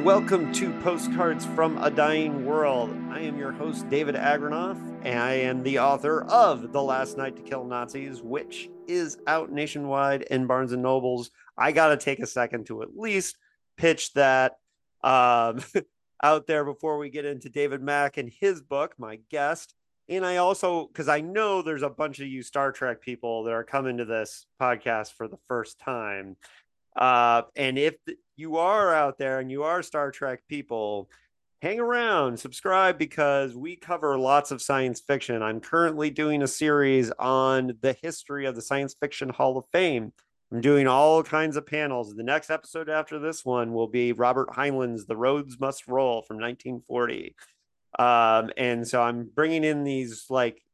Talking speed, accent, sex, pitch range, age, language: 175 wpm, American, male, 120-150 Hz, 40-59, English